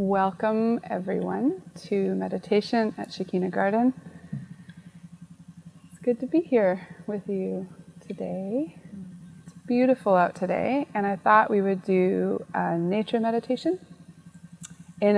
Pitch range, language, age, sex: 170-185 Hz, English, 20-39, female